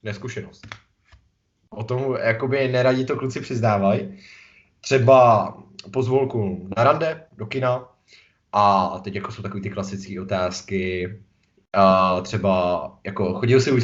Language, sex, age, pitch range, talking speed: Czech, male, 20-39, 95-125 Hz, 120 wpm